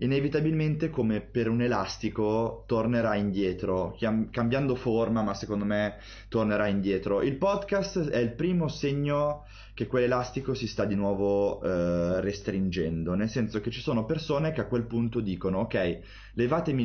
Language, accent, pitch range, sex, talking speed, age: Italian, native, 95-115 Hz, male, 145 wpm, 30-49